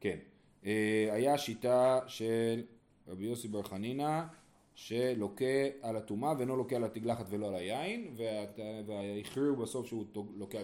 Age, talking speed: 30-49, 125 wpm